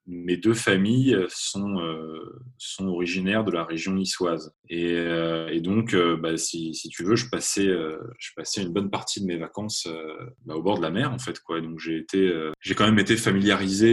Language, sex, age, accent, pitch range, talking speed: French, male, 20-39, French, 85-100 Hz, 220 wpm